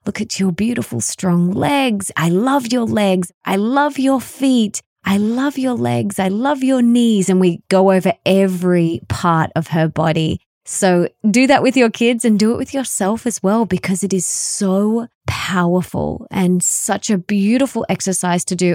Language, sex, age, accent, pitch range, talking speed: English, female, 20-39, Australian, 170-210 Hz, 180 wpm